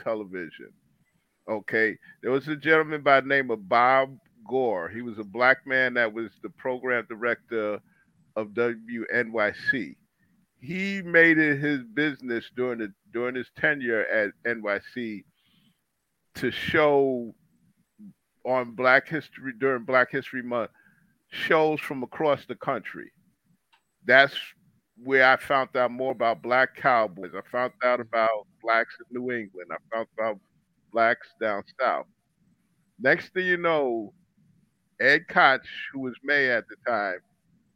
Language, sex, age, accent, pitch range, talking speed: English, male, 50-69, American, 115-155 Hz, 135 wpm